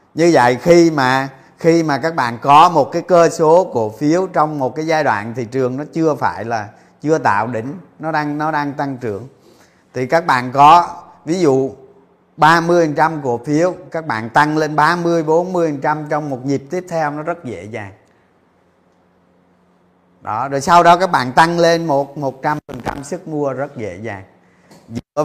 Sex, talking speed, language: male, 180 wpm, Vietnamese